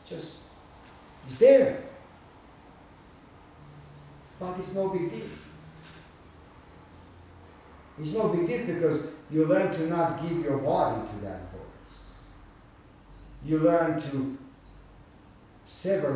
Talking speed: 100 wpm